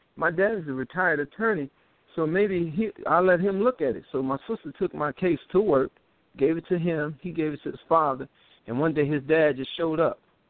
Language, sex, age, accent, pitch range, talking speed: English, male, 50-69, American, 135-170 Hz, 230 wpm